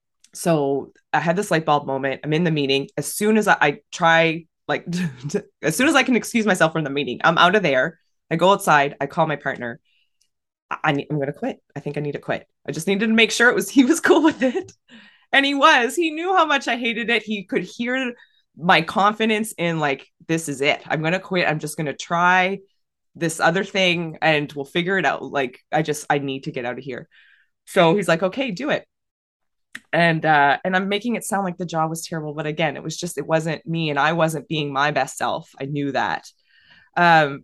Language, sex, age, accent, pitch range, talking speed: English, female, 20-39, American, 150-205 Hz, 235 wpm